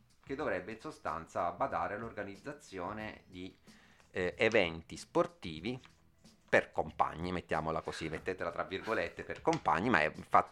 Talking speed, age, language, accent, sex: 125 wpm, 30-49, Italian, native, male